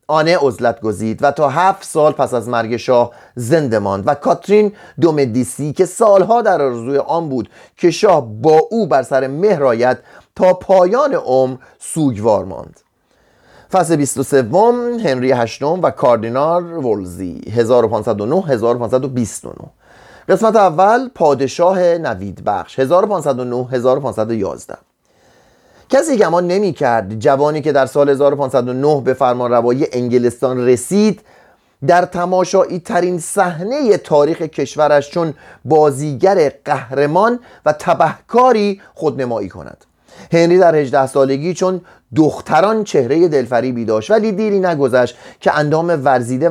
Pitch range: 130-180 Hz